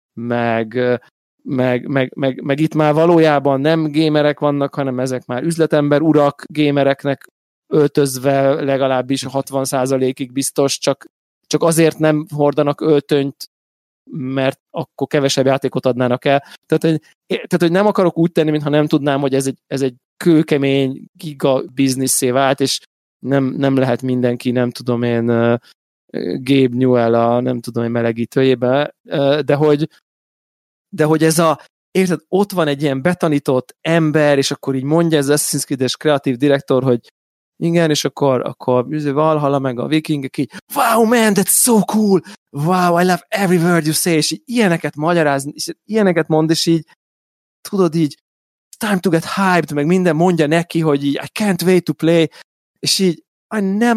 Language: Hungarian